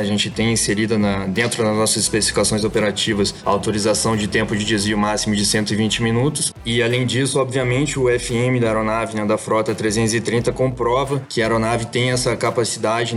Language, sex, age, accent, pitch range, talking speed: Portuguese, male, 20-39, Brazilian, 110-120 Hz, 175 wpm